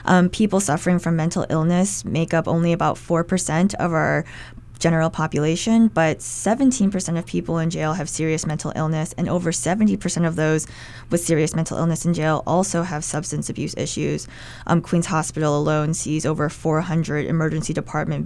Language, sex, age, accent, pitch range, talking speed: English, female, 20-39, American, 150-170 Hz, 165 wpm